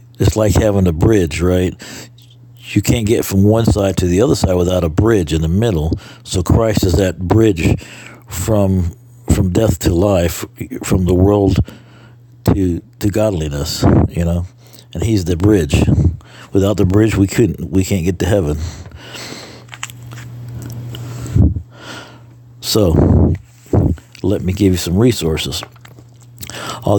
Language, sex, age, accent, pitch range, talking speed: English, male, 60-79, American, 90-105 Hz, 140 wpm